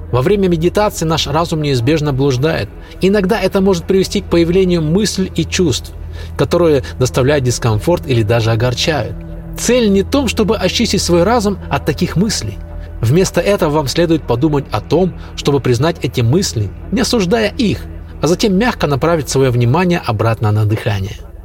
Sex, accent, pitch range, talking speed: male, native, 115-175 Hz, 155 wpm